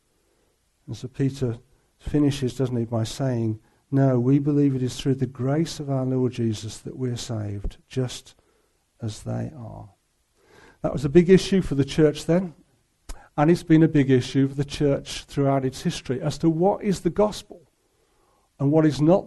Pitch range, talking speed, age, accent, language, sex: 125-165 Hz, 180 wpm, 60-79, British, English, male